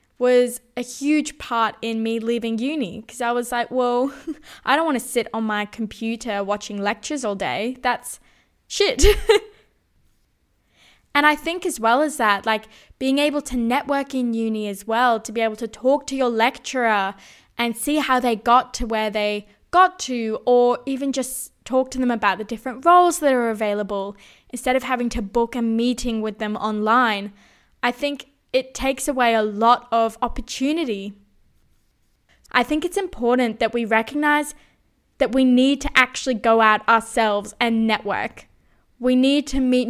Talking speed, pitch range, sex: 170 wpm, 225-265 Hz, female